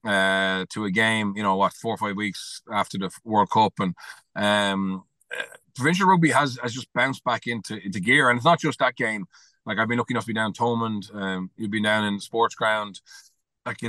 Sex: male